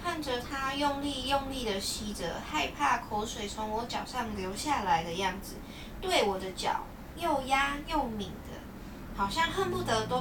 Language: Chinese